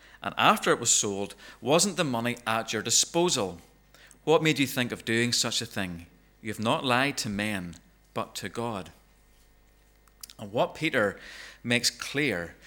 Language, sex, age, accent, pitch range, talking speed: English, male, 40-59, British, 115-160 Hz, 160 wpm